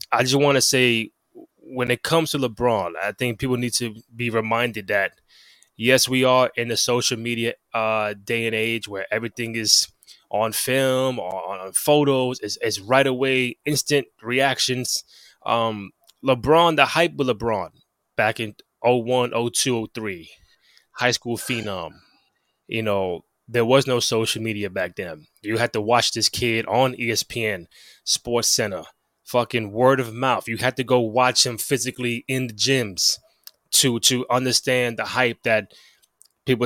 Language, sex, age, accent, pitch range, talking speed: English, male, 20-39, American, 115-130 Hz, 160 wpm